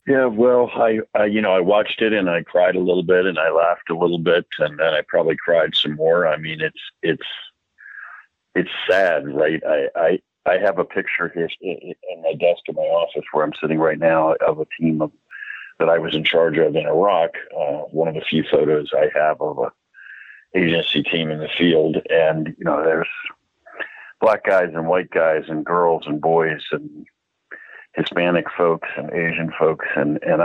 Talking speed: 200 wpm